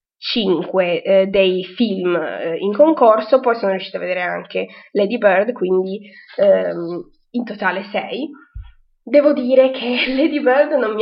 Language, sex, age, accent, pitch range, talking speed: Italian, female, 20-39, native, 185-250 Hz, 145 wpm